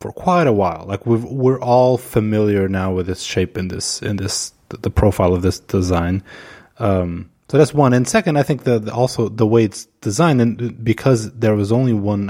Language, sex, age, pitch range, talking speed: English, male, 20-39, 95-125 Hz, 200 wpm